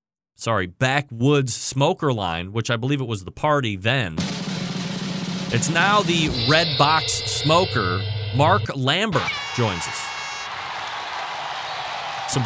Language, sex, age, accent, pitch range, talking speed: English, male, 30-49, American, 110-145 Hz, 110 wpm